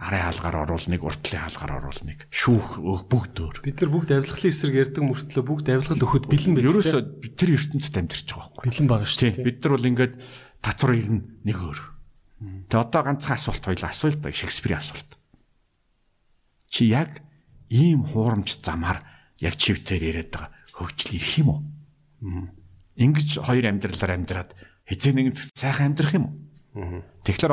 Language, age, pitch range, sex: Korean, 50-69, 95-145 Hz, male